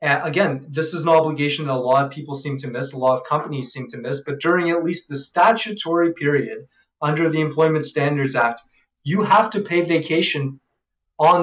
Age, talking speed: 20-39, 205 wpm